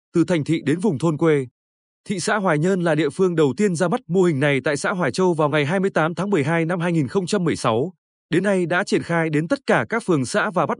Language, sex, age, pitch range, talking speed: Vietnamese, male, 20-39, 155-195 Hz, 250 wpm